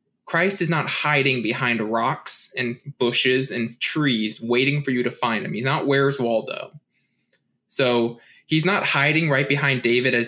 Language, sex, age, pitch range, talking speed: English, male, 20-39, 125-160 Hz, 165 wpm